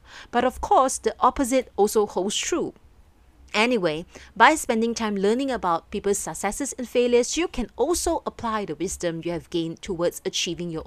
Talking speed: 165 wpm